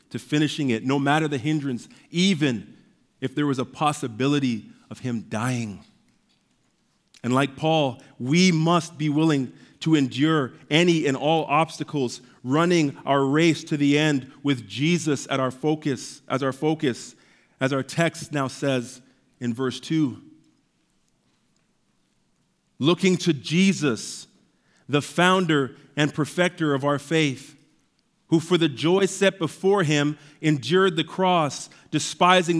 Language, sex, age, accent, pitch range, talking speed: English, male, 40-59, American, 140-170 Hz, 130 wpm